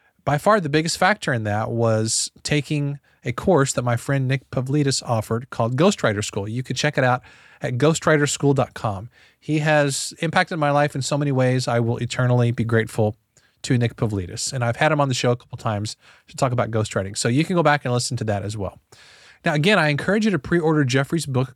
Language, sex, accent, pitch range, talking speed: English, male, American, 120-150 Hz, 215 wpm